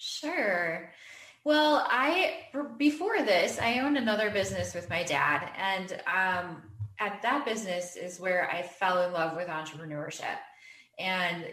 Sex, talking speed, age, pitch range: female, 135 wpm, 10-29, 175-230 Hz